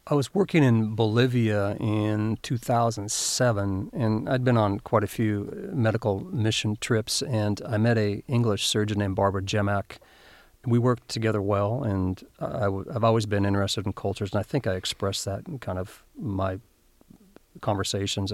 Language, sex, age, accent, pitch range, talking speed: English, male, 40-59, American, 100-115 Hz, 155 wpm